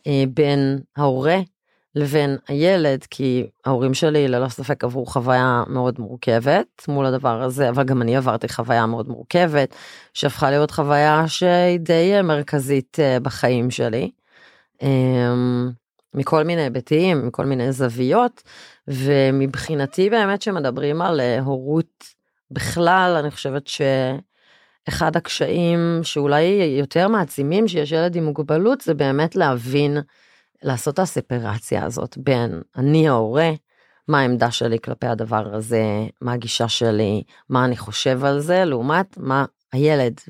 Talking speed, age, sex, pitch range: 120 wpm, 30-49, female, 130-165 Hz